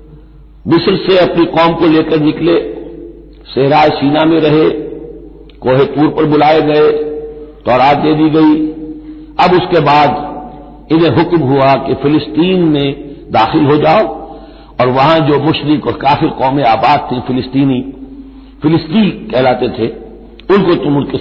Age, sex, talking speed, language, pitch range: 60-79, male, 135 wpm, Hindi, 125-155 Hz